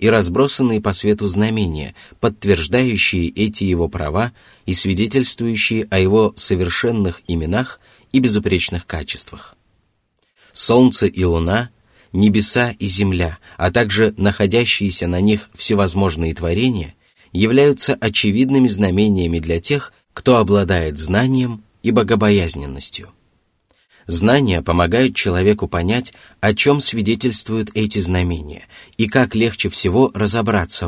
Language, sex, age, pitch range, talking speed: Russian, male, 30-49, 90-115 Hz, 105 wpm